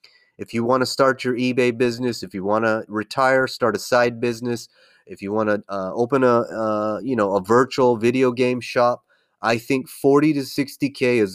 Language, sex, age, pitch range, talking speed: English, male, 30-49, 105-130 Hz, 205 wpm